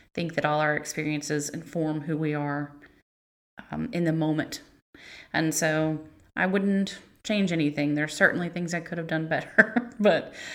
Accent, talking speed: American, 165 wpm